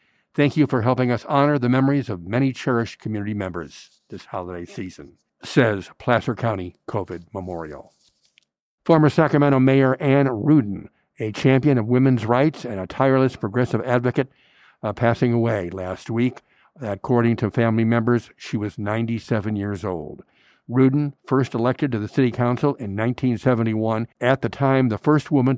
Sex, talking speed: male, 150 wpm